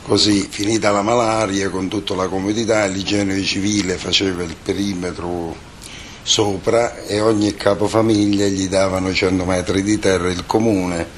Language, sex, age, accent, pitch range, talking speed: Italian, male, 50-69, native, 90-100 Hz, 135 wpm